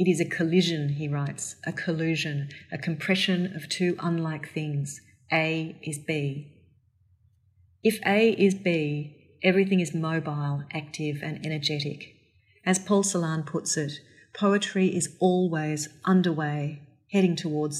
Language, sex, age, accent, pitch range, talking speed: English, female, 40-59, Australian, 150-170 Hz, 130 wpm